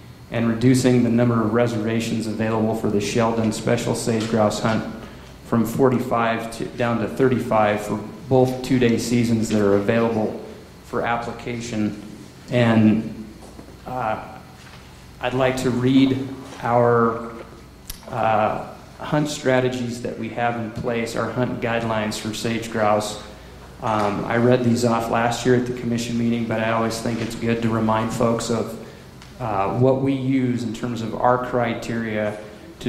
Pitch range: 110-125 Hz